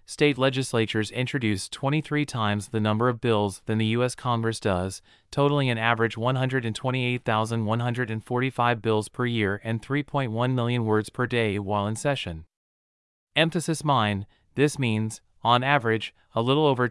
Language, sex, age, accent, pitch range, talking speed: English, male, 30-49, American, 110-135 Hz, 140 wpm